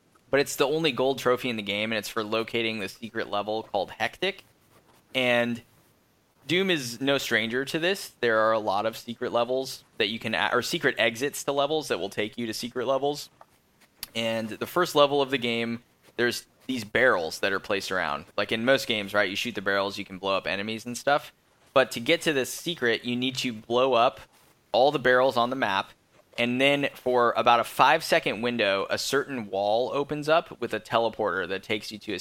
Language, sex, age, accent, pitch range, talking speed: English, male, 10-29, American, 110-135 Hz, 210 wpm